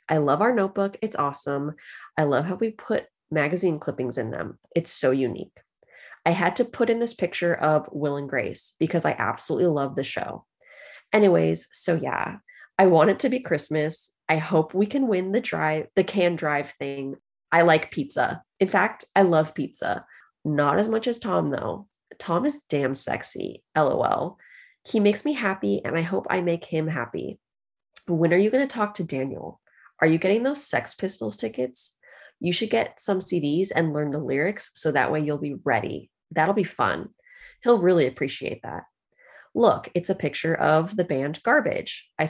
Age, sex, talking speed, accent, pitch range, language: 20-39, female, 185 wpm, American, 150-200 Hz, English